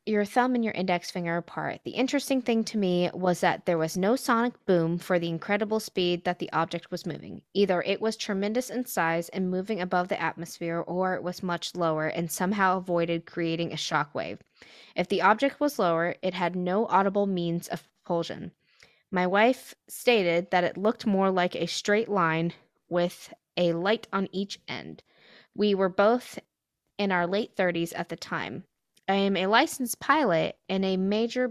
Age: 20-39